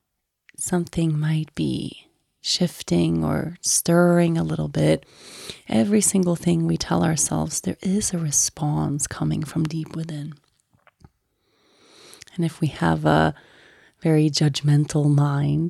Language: English